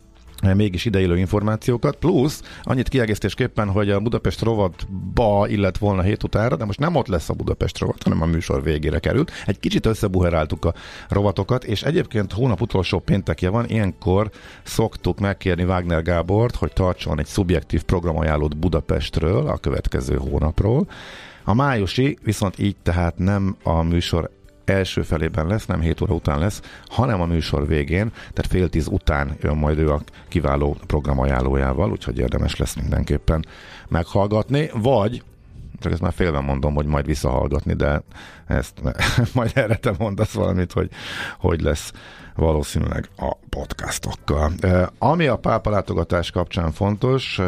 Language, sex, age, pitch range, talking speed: Hungarian, male, 50-69, 80-105 Hz, 150 wpm